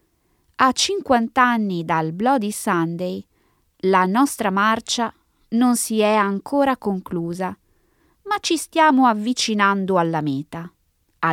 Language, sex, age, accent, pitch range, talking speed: Italian, female, 20-39, native, 165-240 Hz, 110 wpm